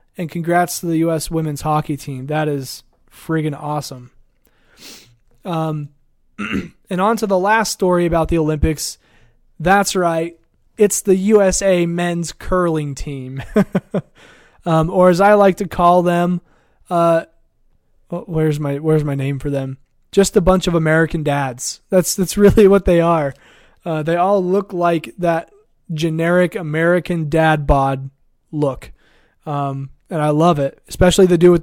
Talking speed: 150 wpm